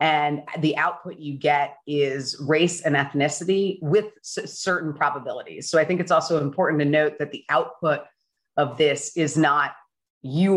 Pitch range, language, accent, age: 145-175 Hz, English, American, 30-49